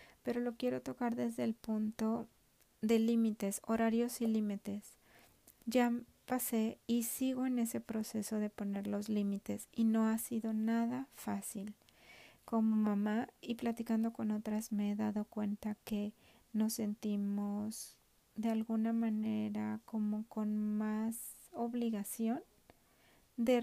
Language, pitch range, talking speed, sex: Spanish, 215-240 Hz, 125 wpm, female